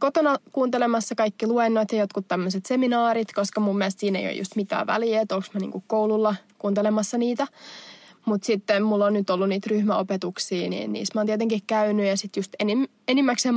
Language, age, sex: Finnish, 20-39, female